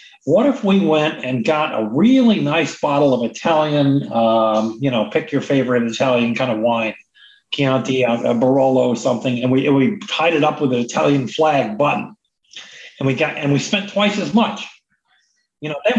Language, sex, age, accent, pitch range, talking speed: English, male, 40-59, American, 140-210 Hz, 190 wpm